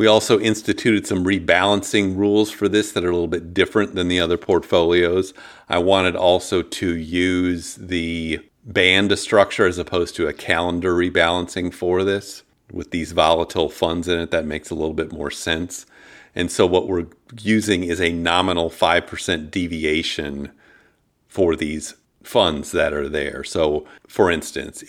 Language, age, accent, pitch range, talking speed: English, 40-59, American, 80-95 Hz, 160 wpm